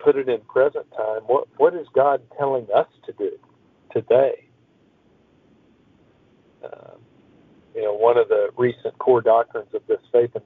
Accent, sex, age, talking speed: American, male, 50-69, 155 wpm